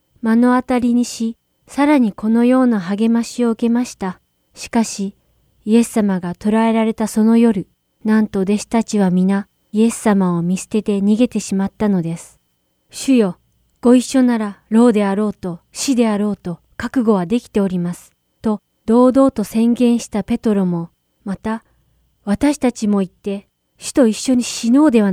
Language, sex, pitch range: Japanese, female, 190-235 Hz